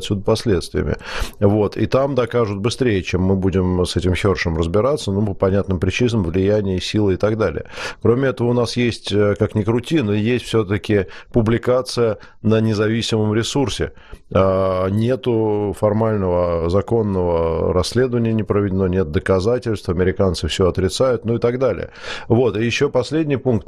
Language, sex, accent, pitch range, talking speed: Russian, male, native, 95-120 Hz, 150 wpm